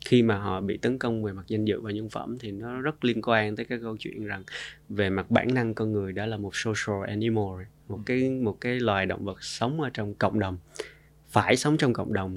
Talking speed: 250 wpm